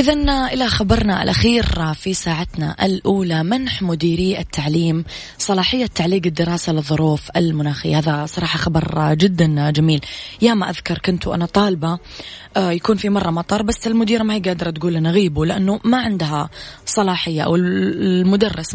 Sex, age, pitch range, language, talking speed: female, 20-39, 160-190 Hz, Arabic, 140 wpm